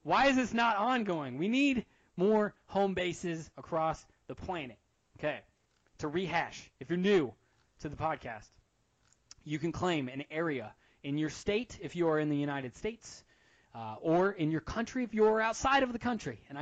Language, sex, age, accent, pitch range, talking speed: English, male, 20-39, American, 145-215 Hz, 175 wpm